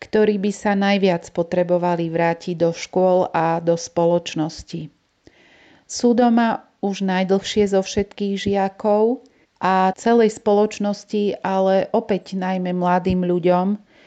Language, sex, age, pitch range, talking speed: Slovak, female, 40-59, 180-200 Hz, 110 wpm